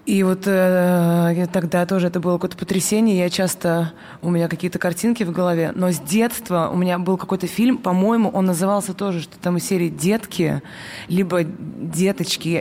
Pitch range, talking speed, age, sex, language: 175-200 Hz, 175 wpm, 20-39, female, Russian